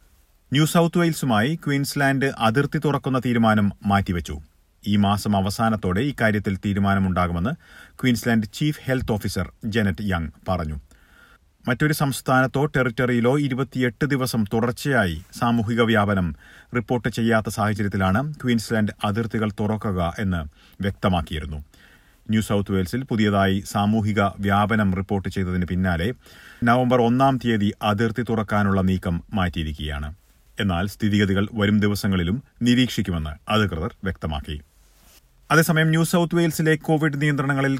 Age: 30-49